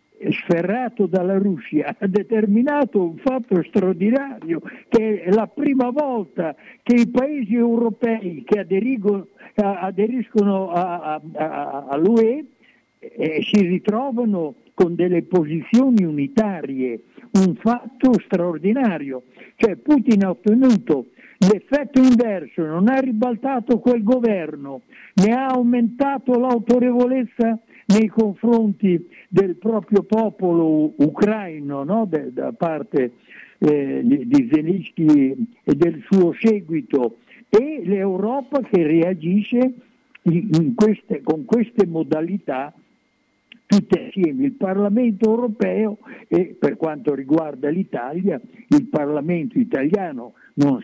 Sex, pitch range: male, 170-240 Hz